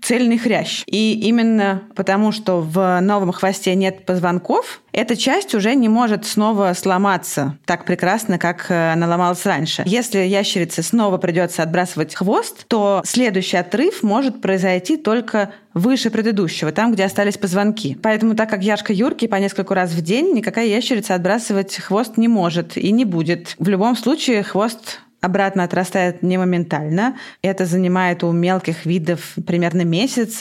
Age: 20-39